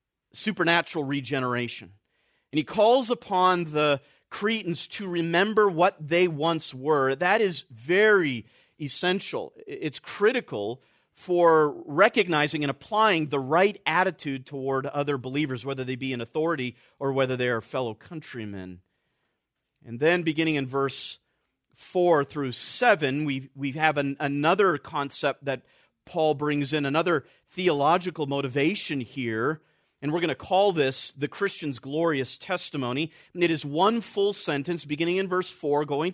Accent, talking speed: American, 135 wpm